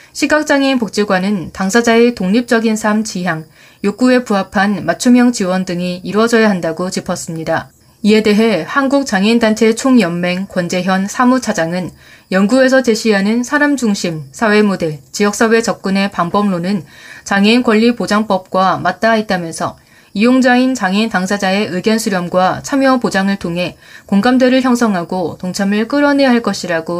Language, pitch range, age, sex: Korean, 185-235 Hz, 20-39, female